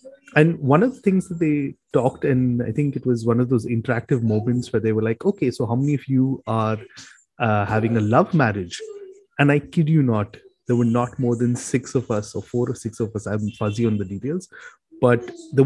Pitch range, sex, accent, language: 115-140 Hz, male, Indian, English